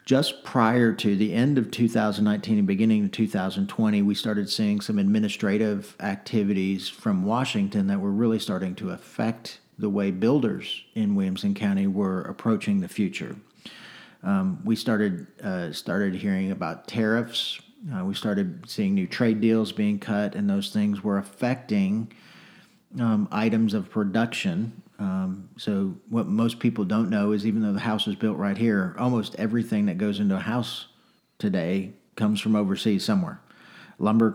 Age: 40-59